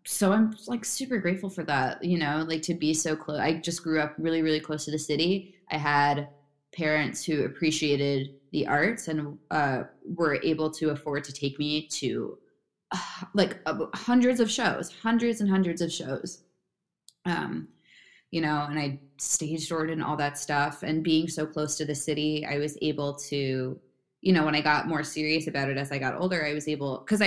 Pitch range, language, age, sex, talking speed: 145-175 Hz, English, 20-39, female, 200 wpm